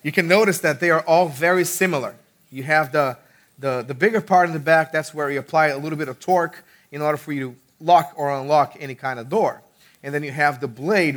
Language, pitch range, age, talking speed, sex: English, 130-160 Hz, 30-49, 245 wpm, male